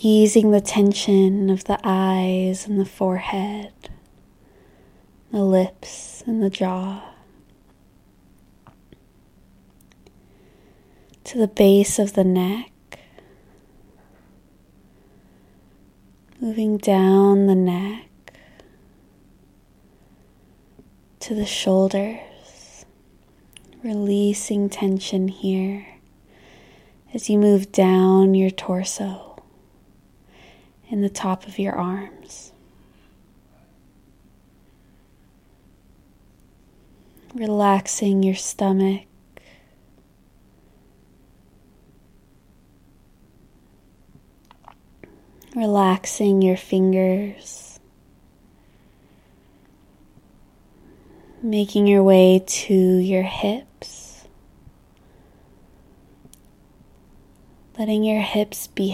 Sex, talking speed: female, 60 wpm